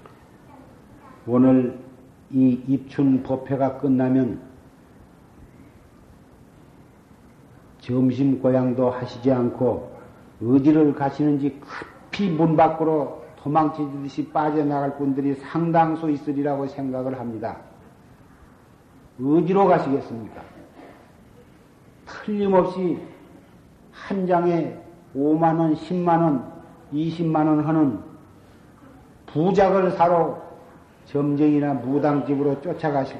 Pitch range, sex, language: 130-160 Hz, male, Korean